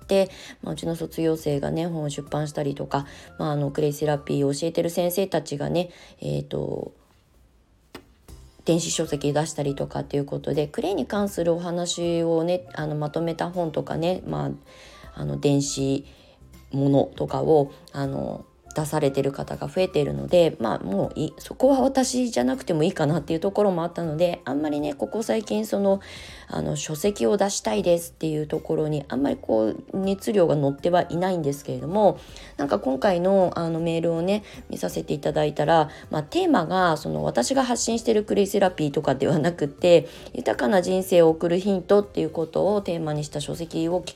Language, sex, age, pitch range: Japanese, female, 20-39, 140-180 Hz